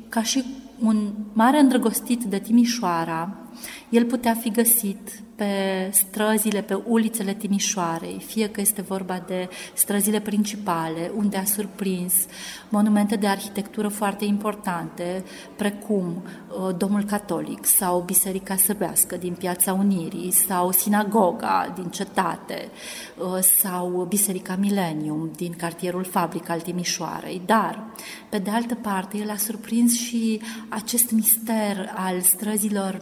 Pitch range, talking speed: 180-215 Hz, 120 wpm